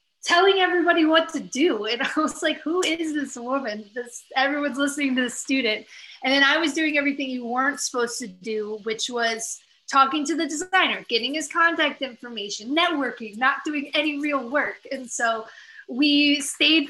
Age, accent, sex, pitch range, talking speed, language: 30-49, American, female, 230-280 Hz, 180 wpm, English